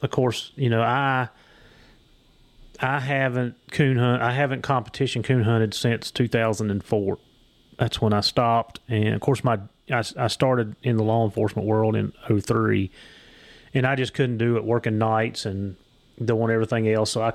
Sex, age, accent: male, 30-49, American